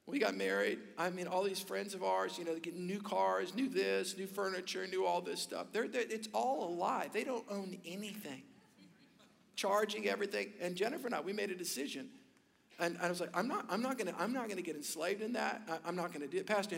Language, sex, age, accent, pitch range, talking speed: English, male, 50-69, American, 180-250 Hz, 245 wpm